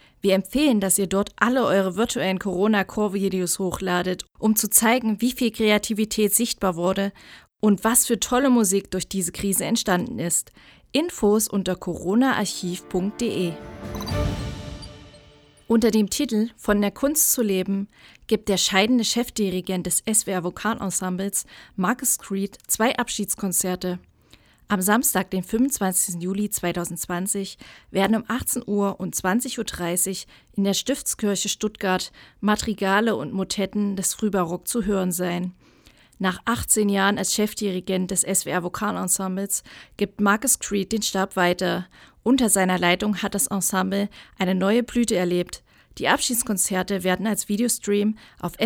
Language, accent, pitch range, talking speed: German, German, 185-220 Hz, 130 wpm